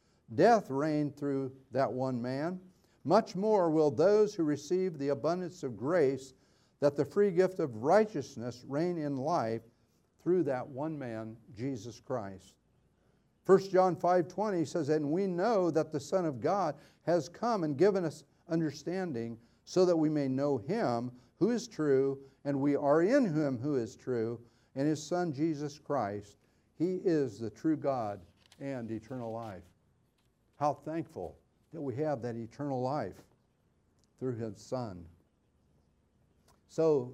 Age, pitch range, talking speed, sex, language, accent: 50-69, 115-155 Hz, 145 wpm, male, English, American